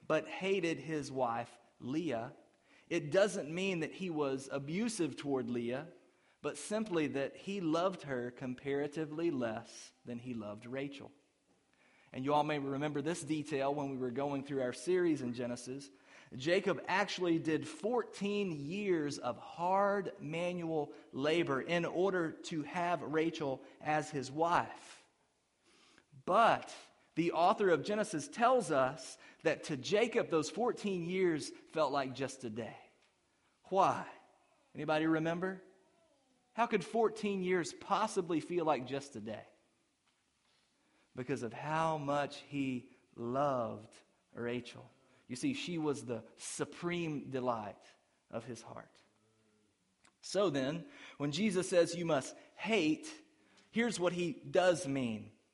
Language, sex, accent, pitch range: English, male, American, 135-180 Hz